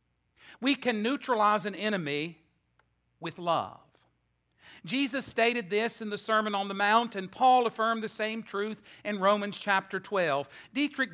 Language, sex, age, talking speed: English, male, 50-69, 145 wpm